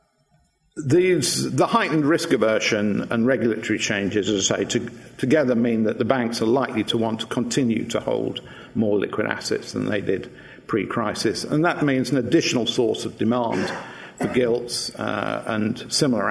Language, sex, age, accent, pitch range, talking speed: English, male, 50-69, British, 110-140 Hz, 160 wpm